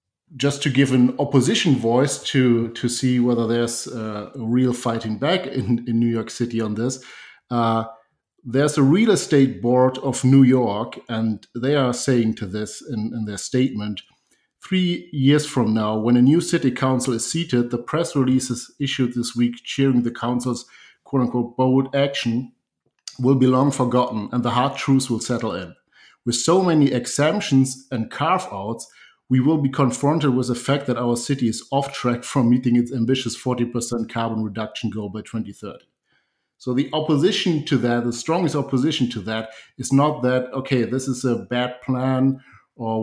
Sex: male